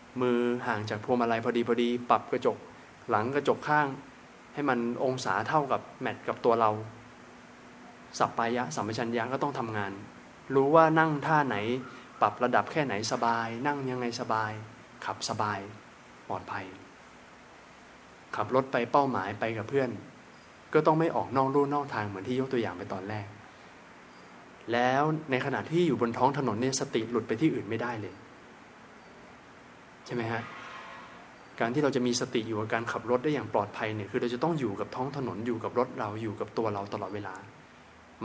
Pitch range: 115-140 Hz